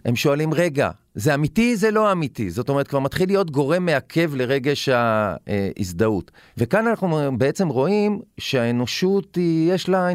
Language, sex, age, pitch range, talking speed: Hebrew, male, 40-59, 125-180 Hz, 150 wpm